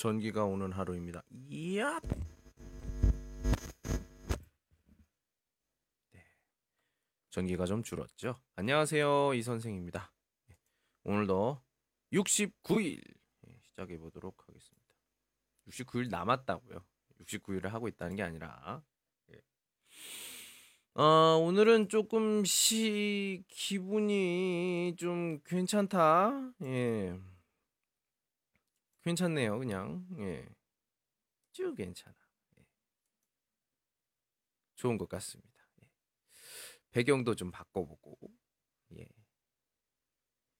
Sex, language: male, Chinese